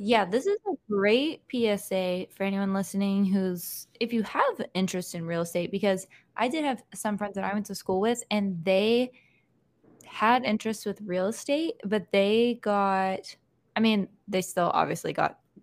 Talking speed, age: 175 wpm, 10-29